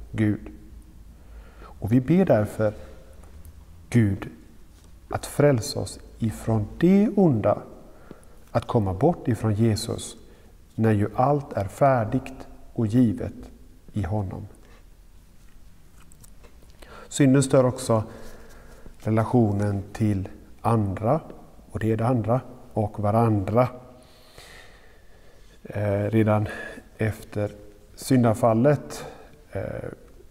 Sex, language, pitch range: male, Swedish, 100-125 Hz